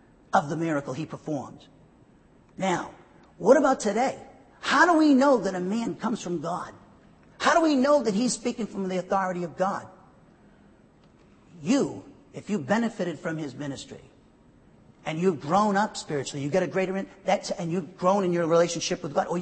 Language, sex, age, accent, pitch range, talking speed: English, male, 50-69, American, 175-235 Hz, 175 wpm